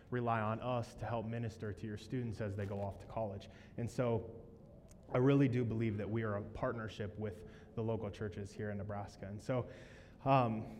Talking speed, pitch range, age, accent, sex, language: 200 wpm, 110-135 Hz, 20-39, American, male, English